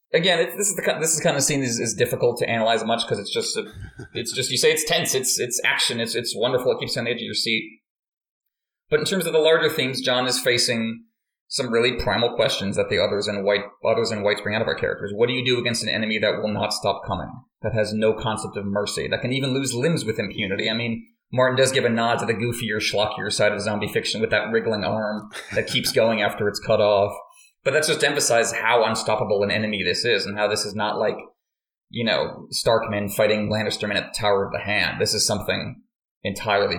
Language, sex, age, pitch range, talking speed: English, male, 30-49, 105-130 Hz, 245 wpm